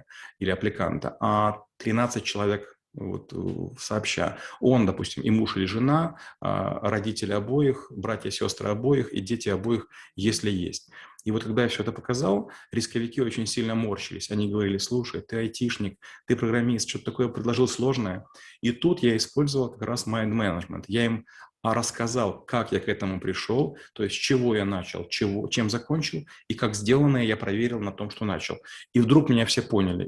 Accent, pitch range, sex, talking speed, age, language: native, 105-125 Hz, male, 170 wpm, 30-49, Russian